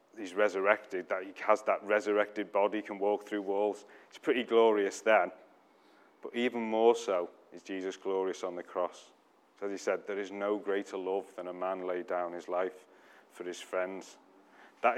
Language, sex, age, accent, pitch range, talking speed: English, male, 30-49, British, 95-115 Hz, 180 wpm